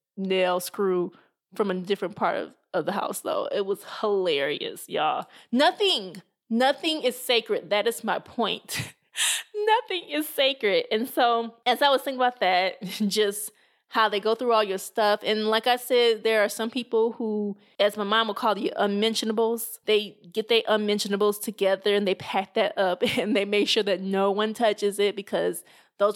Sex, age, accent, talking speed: female, 20-39, American, 180 wpm